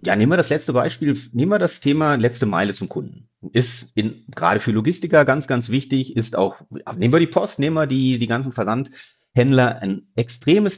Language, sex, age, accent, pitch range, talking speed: German, male, 40-59, German, 110-150 Hz, 195 wpm